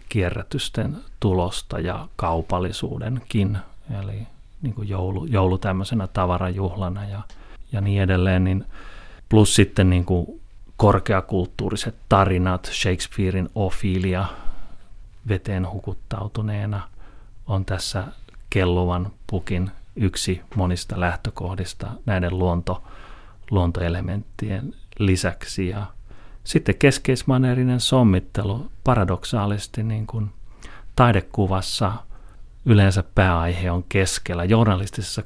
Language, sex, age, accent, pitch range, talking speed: Finnish, male, 30-49, native, 90-110 Hz, 80 wpm